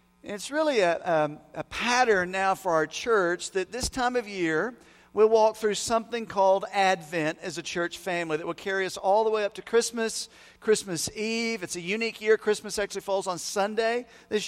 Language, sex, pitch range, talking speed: English, male, 185-230 Hz, 195 wpm